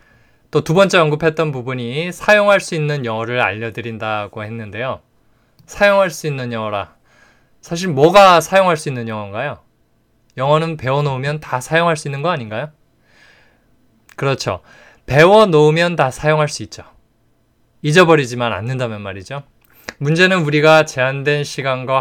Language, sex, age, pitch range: Korean, male, 20-39, 115-155 Hz